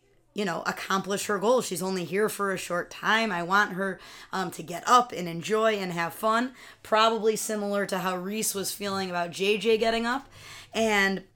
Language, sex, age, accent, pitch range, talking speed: English, female, 20-39, American, 180-220 Hz, 190 wpm